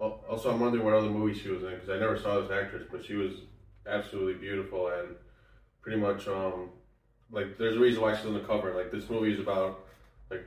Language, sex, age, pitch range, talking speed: English, male, 20-39, 90-105 Hz, 225 wpm